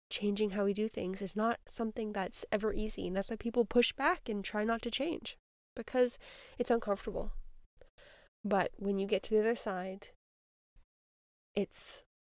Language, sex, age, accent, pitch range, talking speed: English, female, 20-39, American, 195-230 Hz, 165 wpm